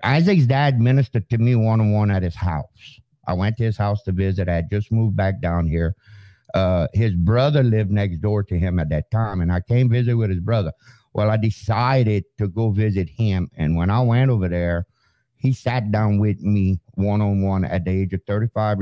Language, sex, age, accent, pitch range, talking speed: English, male, 60-79, American, 90-115 Hz, 205 wpm